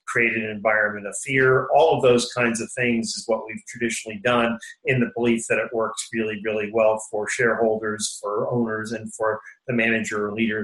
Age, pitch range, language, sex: 40-59, 115-145 Hz, English, male